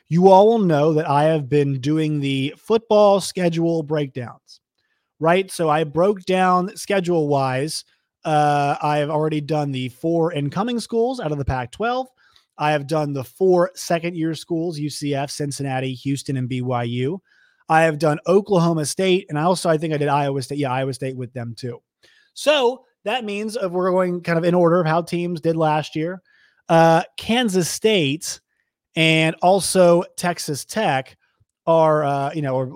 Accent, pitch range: American, 130-170 Hz